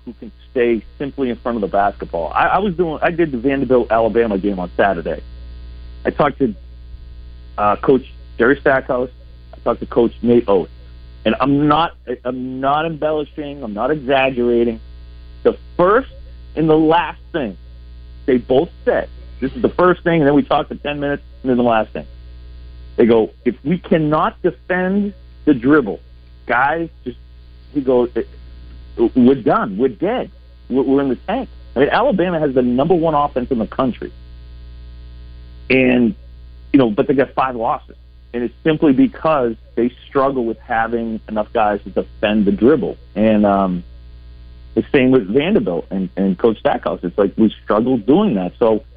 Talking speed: 170 wpm